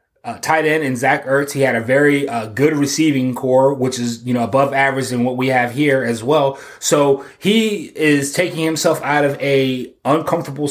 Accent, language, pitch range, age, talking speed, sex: American, English, 130-155 Hz, 20-39, 200 wpm, male